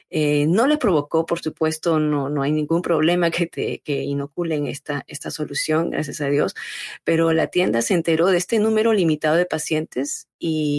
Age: 40-59